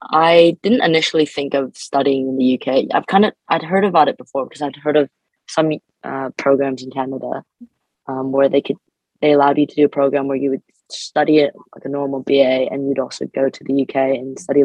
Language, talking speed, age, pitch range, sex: English, 225 wpm, 20-39, 135-150 Hz, female